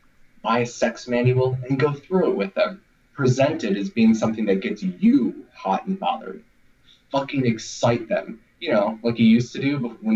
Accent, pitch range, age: American, 95-130 Hz, 30-49